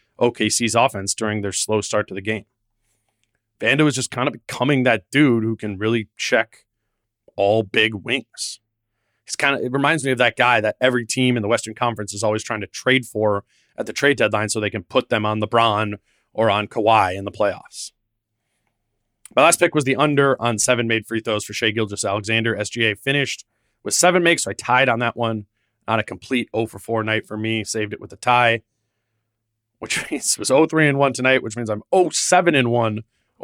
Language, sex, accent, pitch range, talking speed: English, male, American, 105-125 Hz, 205 wpm